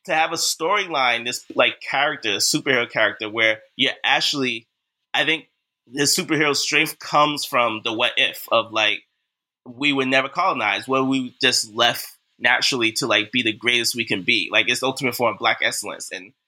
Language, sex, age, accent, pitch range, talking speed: English, male, 20-39, American, 115-145 Hz, 180 wpm